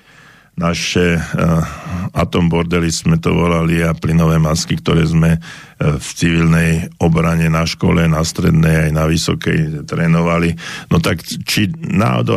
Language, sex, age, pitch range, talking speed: Slovak, male, 50-69, 80-95 Hz, 120 wpm